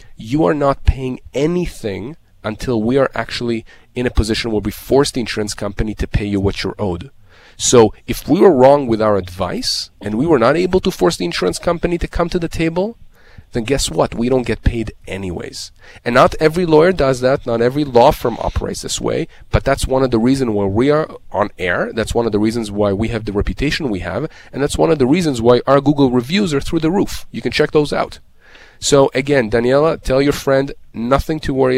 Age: 30-49